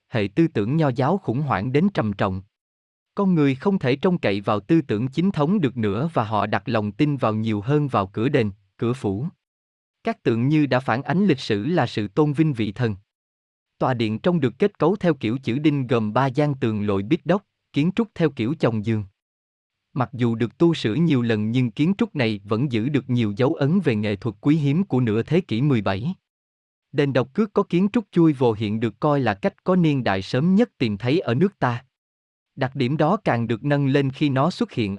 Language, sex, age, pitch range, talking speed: Vietnamese, male, 20-39, 110-155 Hz, 230 wpm